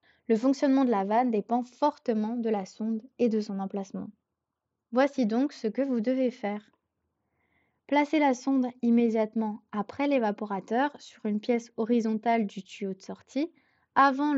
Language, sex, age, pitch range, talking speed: French, female, 20-39, 210-265 Hz, 150 wpm